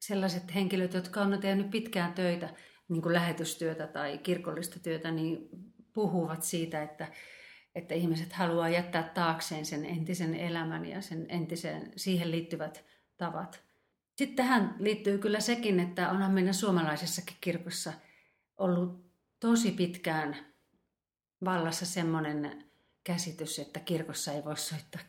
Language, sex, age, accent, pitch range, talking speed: Finnish, female, 40-59, native, 160-185 Hz, 125 wpm